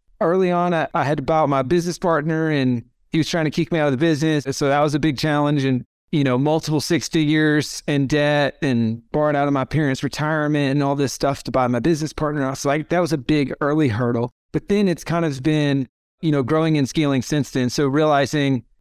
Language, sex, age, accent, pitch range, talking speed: English, male, 30-49, American, 130-150 Hz, 235 wpm